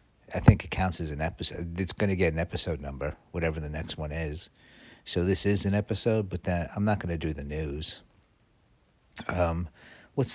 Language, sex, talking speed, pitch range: English, male, 205 wpm, 85-100 Hz